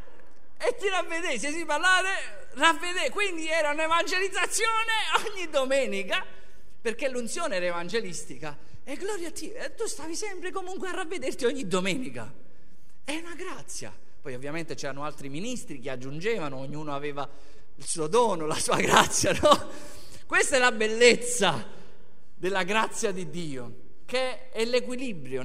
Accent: native